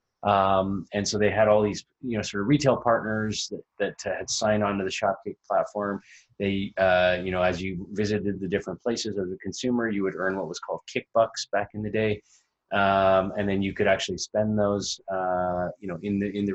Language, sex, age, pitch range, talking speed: English, male, 20-39, 95-115 Hz, 230 wpm